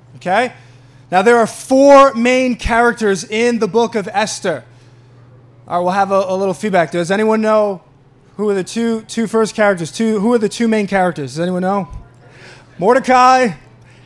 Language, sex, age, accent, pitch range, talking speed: English, male, 20-39, American, 170-240 Hz, 175 wpm